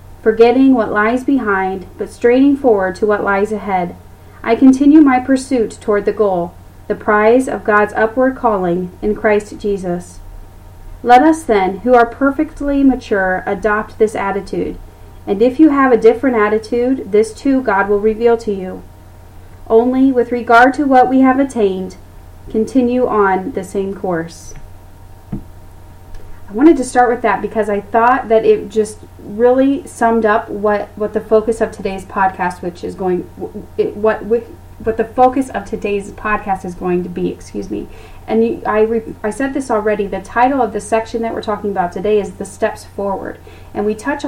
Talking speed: 170 wpm